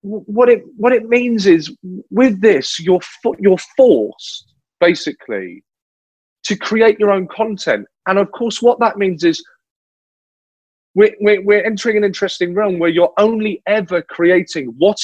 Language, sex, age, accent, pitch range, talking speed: English, male, 30-49, British, 170-215 Hz, 150 wpm